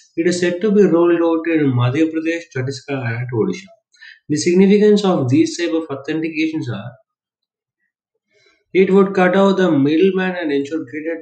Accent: Indian